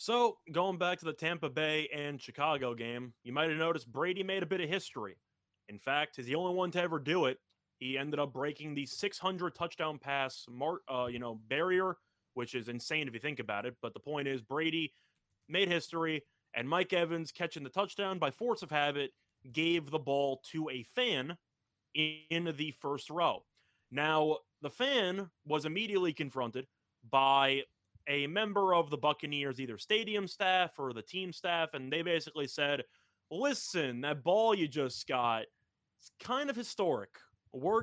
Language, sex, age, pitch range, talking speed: English, male, 20-39, 135-185 Hz, 175 wpm